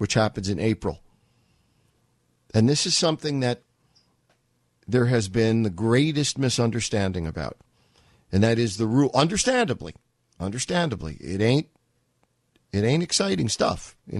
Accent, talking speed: American, 125 wpm